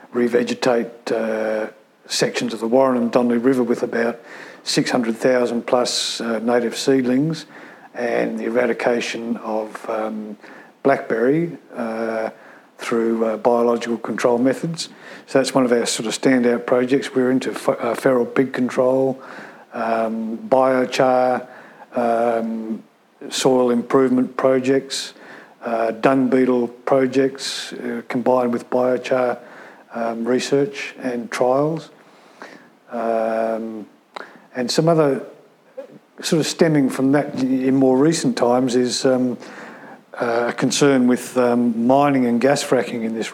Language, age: English, 50-69